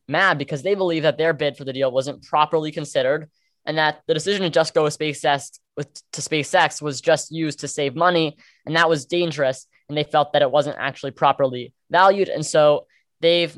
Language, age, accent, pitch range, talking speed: English, 10-29, American, 140-165 Hz, 210 wpm